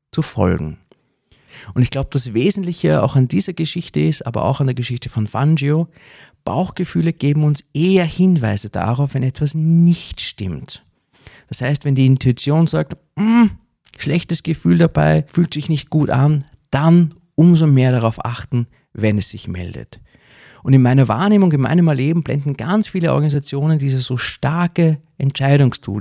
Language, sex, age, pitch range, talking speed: German, male, 40-59, 110-150 Hz, 155 wpm